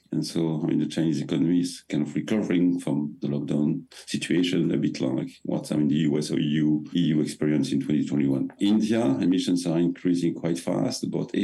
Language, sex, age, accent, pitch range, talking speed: English, male, 50-69, French, 85-100 Hz, 190 wpm